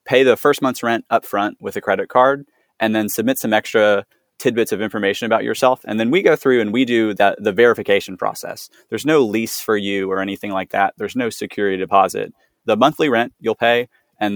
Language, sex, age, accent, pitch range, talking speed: English, male, 20-39, American, 100-115 Hz, 215 wpm